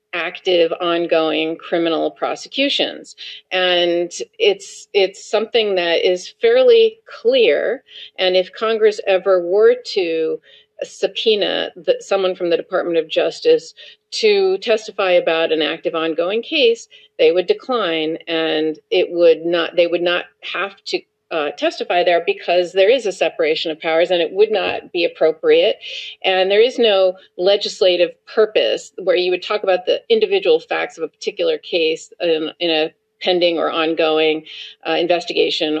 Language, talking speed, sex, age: English, 145 wpm, female, 40-59